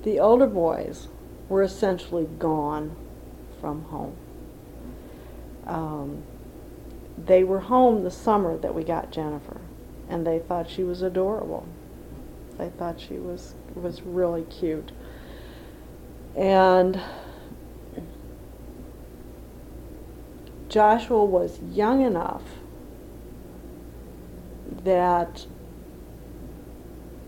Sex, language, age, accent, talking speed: female, English, 50-69, American, 80 wpm